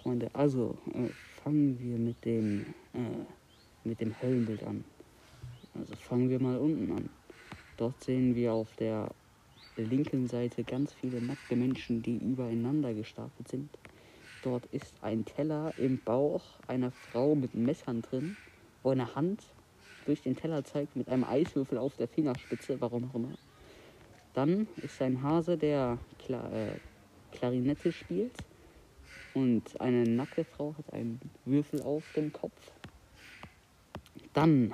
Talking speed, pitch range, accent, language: 135 wpm, 115-145 Hz, German, German